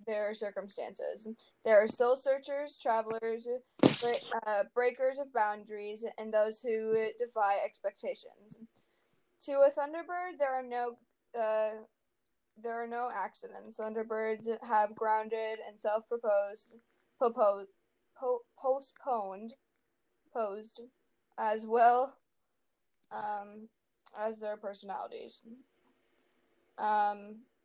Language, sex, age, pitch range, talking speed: English, female, 10-29, 215-245 Hz, 95 wpm